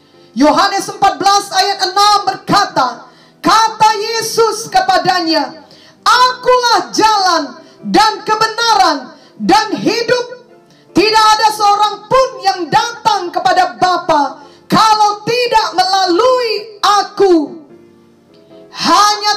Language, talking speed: English, 85 wpm